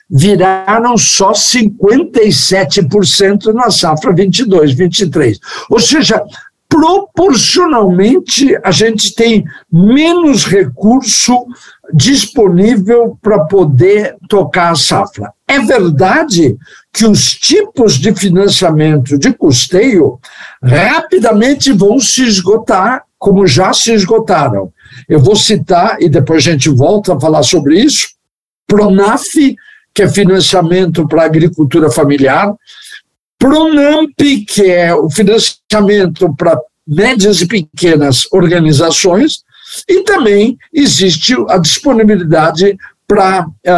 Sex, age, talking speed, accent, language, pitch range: male, 60-79, 105 wpm, Brazilian, Portuguese, 165-225 Hz